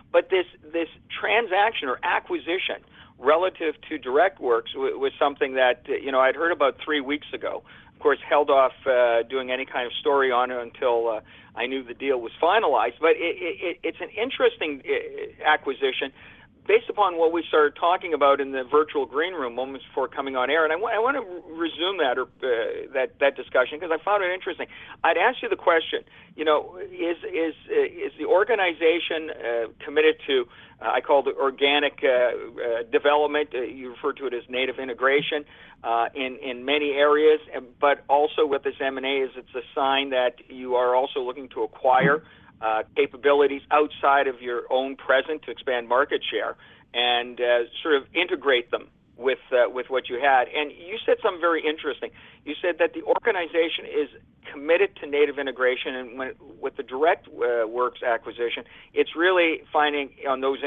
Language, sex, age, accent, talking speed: English, male, 50-69, American, 190 wpm